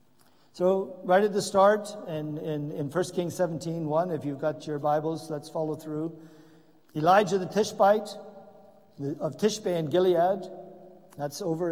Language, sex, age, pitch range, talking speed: English, male, 50-69, 140-175 Hz, 155 wpm